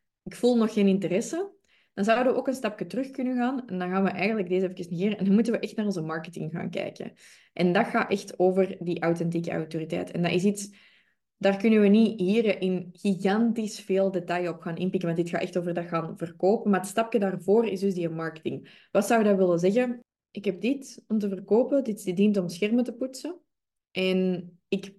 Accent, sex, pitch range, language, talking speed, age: Dutch, female, 180-225 Hz, Dutch, 220 wpm, 20-39